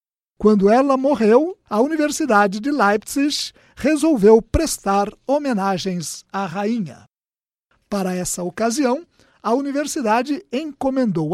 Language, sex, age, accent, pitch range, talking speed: Portuguese, male, 60-79, Brazilian, 195-260 Hz, 95 wpm